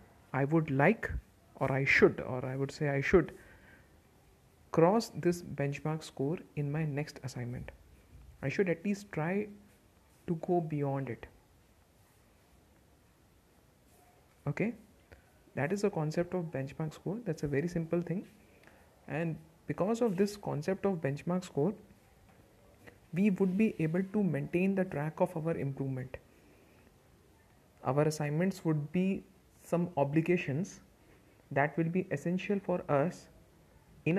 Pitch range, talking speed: 135-175 Hz, 130 wpm